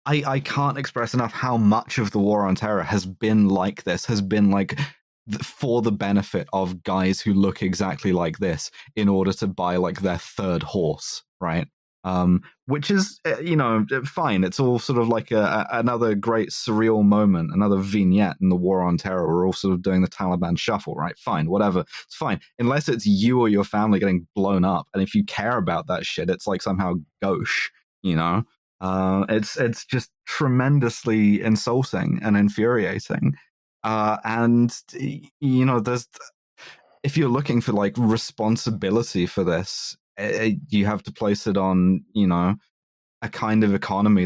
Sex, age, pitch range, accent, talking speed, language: male, 20-39, 95-115 Hz, British, 175 wpm, English